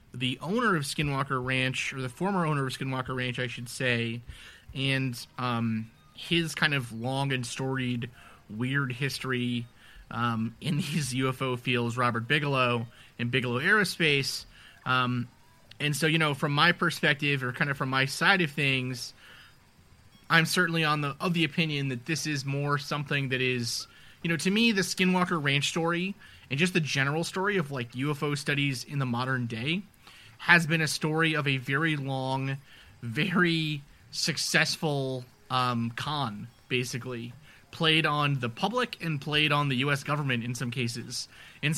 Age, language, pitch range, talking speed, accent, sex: 30-49, English, 125-160 Hz, 160 wpm, American, male